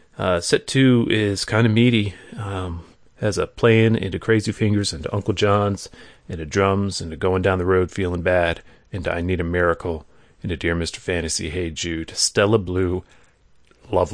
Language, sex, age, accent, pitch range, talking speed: English, male, 30-49, American, 90-115 Hz, 180 wpm